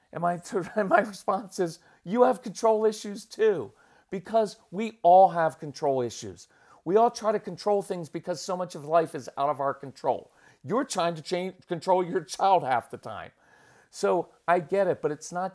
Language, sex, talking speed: English, male, 195 wpm